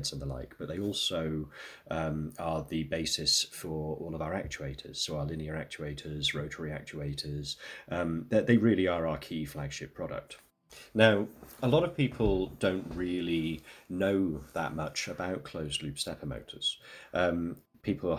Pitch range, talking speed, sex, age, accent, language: 75-100 Hz, 150 wpm, male, 30-49, British, English